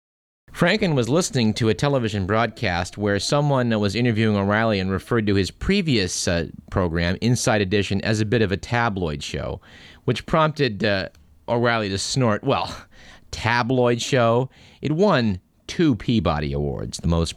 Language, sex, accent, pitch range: English, male, American, 90-120 Hz